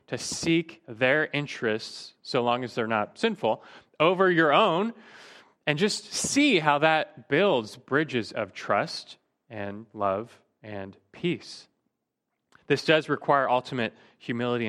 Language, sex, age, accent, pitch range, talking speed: English, male, 20-39, American, 115-150 Hz, 125 wpm